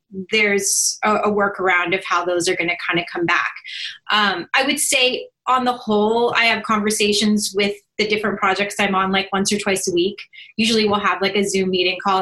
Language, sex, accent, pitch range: English, female, American, 185-220 Hz